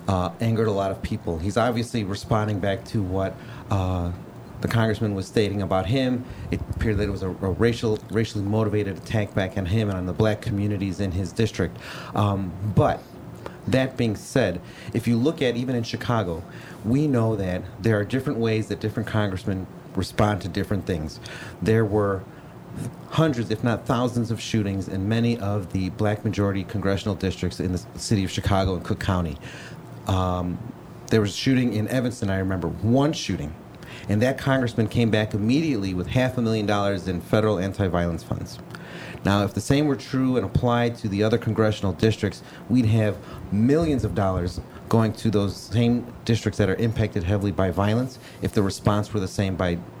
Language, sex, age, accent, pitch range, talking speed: English, male, 30-49, American, 95-115 Hz, 180 wpm